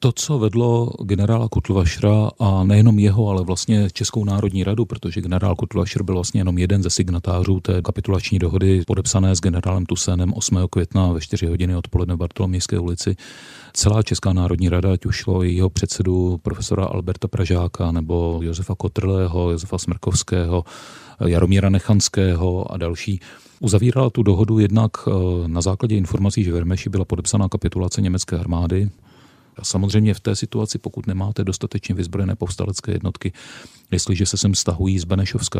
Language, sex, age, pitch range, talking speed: Czech, male, 40-59, 90-110 Hz, 155 wpm